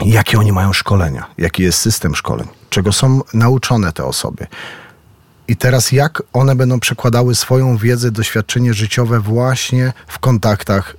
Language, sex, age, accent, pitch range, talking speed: Polish, male, 40-59, native, 115-140 Hz, 140 wpm